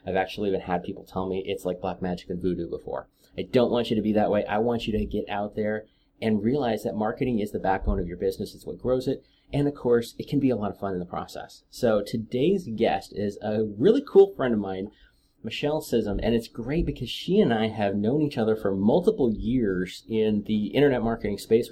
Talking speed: 240 wpm